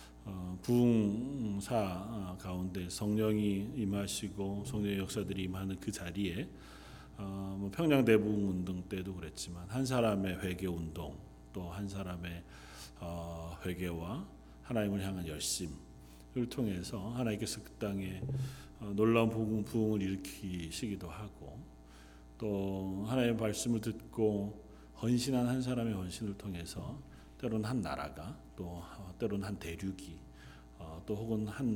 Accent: native